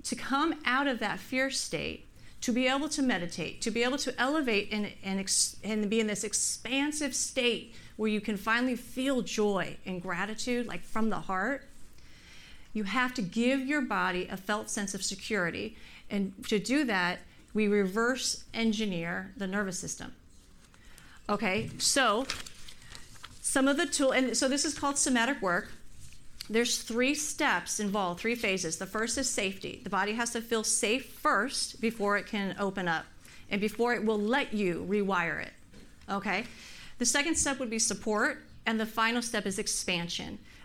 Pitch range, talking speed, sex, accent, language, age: 195-245 Hz, 170 wpm, female, American, English, 40-59